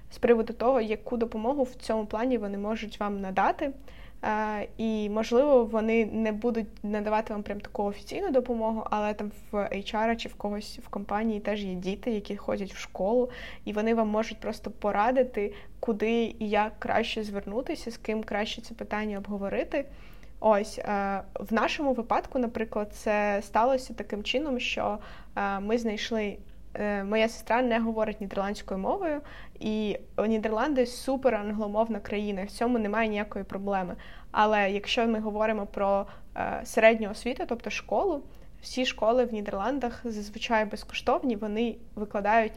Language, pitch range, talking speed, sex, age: Ukrainian, 210-235 Hz, 145 wpm, female, 20-39